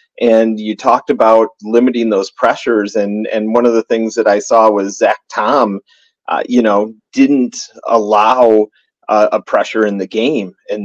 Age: 30-49